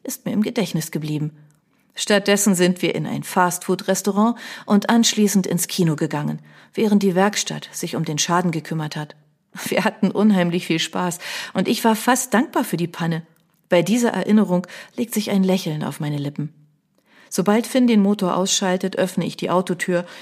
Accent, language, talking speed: German, German, 170 wpm